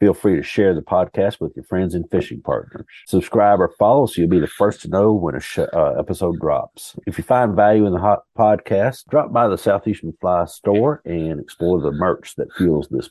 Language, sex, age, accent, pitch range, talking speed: English, male, 50-69, American, 85-105 Hz, 225 wpm